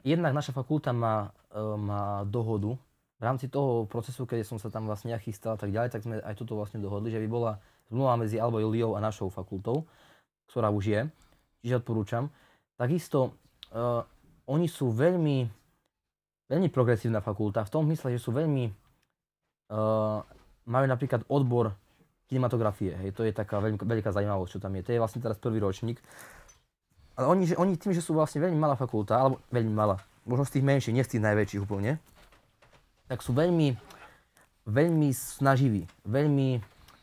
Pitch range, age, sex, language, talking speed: 110-135 Hz, 20-39, male, Slovak, 160 wpm